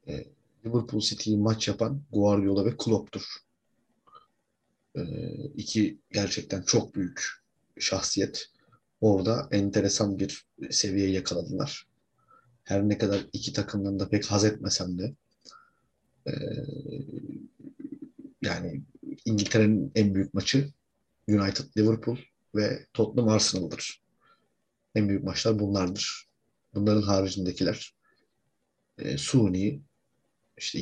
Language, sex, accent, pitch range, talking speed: Turkish, male, native, 100-110 Hz, 90 wpm